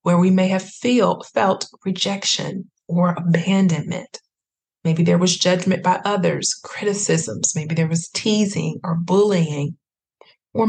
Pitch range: 170-195 Hz